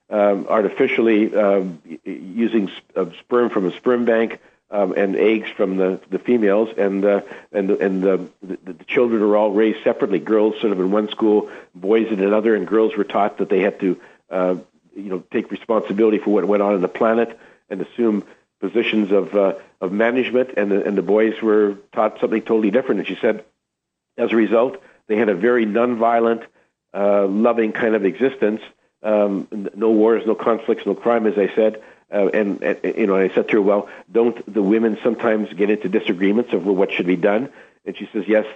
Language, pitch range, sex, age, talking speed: English, 100-115 Hz, male, 50-69, 200 wpm